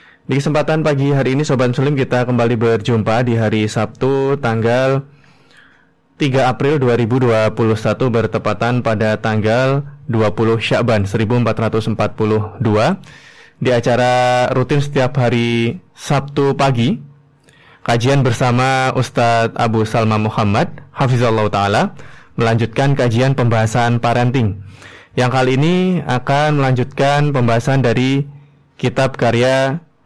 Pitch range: 115-140 Hz